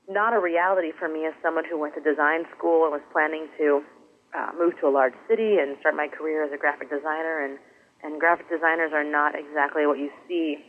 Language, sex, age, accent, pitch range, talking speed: English, female, 30-49, American, 150-180 Hz, 225 wpm